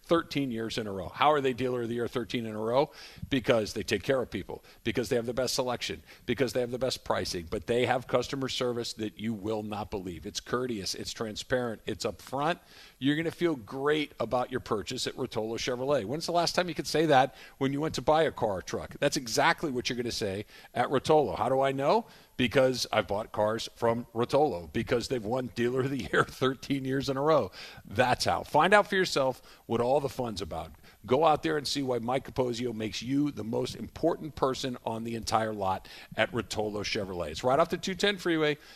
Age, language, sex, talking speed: 50-69, English, male, 230 wpm